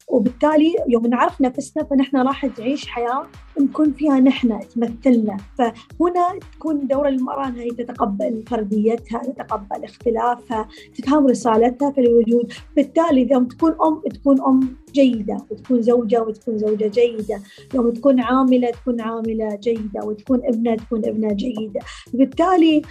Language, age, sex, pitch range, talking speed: Arabic, 20-39, female, 230-275 Hz, 130 wpm